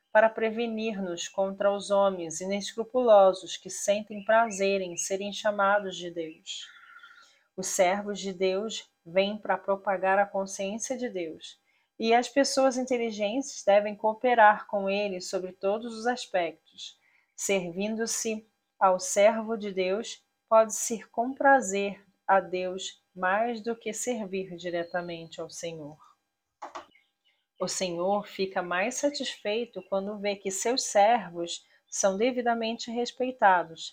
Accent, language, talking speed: Brazilian, Portuguese, 120 wpm